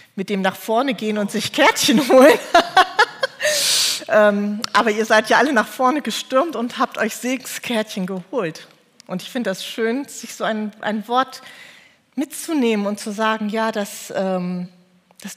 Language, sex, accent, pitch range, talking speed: German, female, German, 185-235 Hz, 155 wpm